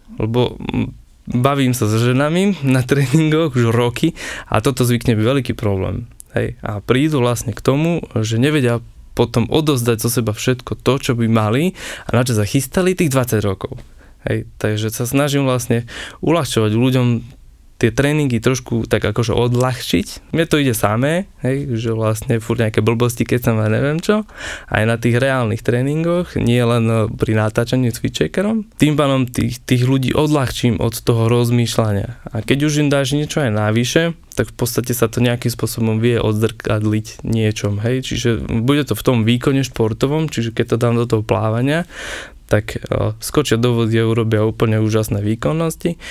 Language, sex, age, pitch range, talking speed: Slovak, male, 20-39, 115-140 Hz, 165 wpm